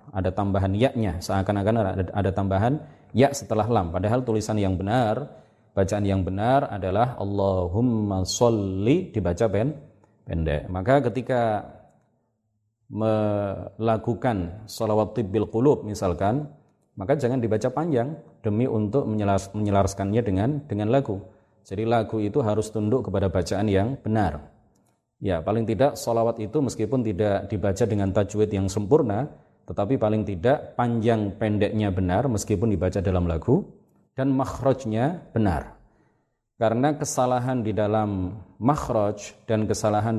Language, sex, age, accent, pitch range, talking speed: Indonesian, male, 30-49, native, 100-120 Hz, 120 wpm